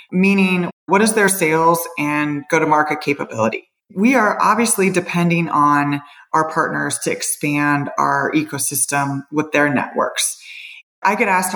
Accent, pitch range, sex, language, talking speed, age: American, 165-205 Hz, female, English, 130 wpm, 30-49